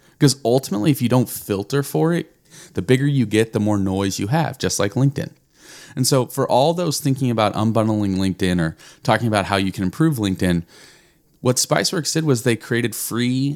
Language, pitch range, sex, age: English, 100-145 Hz, male, 30-49